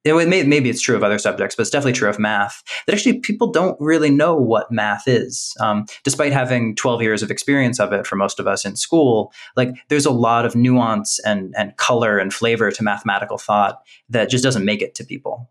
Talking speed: 230 wpm